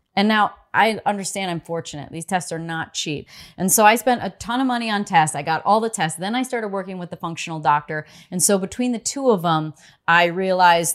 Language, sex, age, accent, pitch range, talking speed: English, female, 30-49, American, 160-195 Hz, 235 wpm